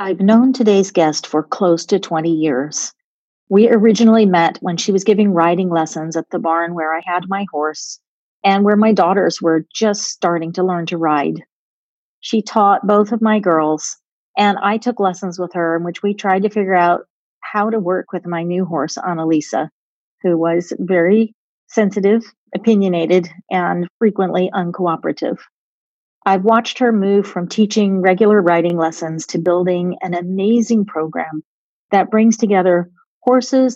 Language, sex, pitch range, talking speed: English, female, 170-205 Hz, 160 wpm